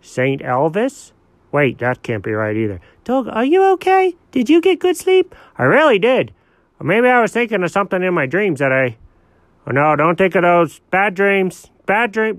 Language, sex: English, male